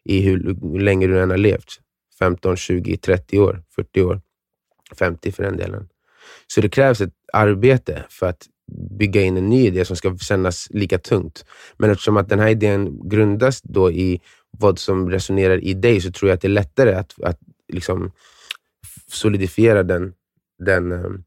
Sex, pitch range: male, 95-110 Hz